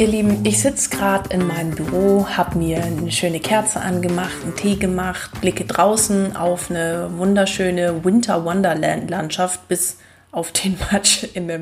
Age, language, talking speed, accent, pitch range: 20-39, German, 150 wpm, German, 170-195 Hz